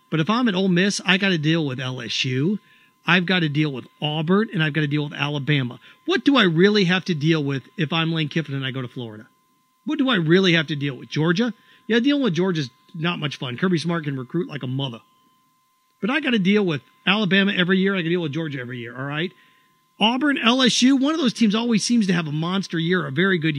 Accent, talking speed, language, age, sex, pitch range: American, 255 wpm, English, 40-59, male, 170-255 Hz